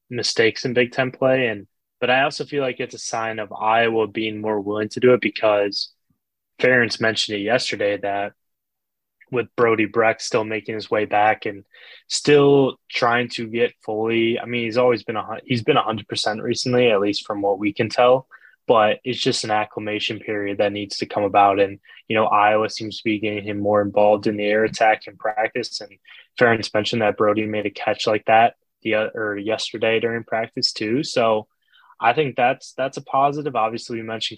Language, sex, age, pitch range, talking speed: English, male, 10-29, 105-120 Hz, 195 wpm